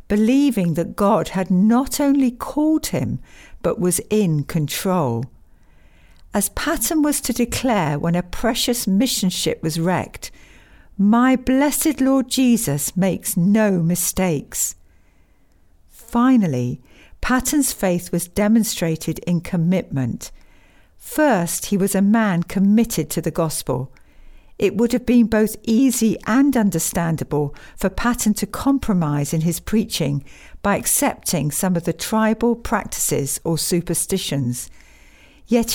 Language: English